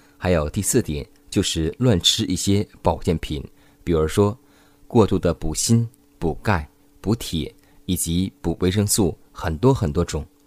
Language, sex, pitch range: Chinese, male, 80-105 Hz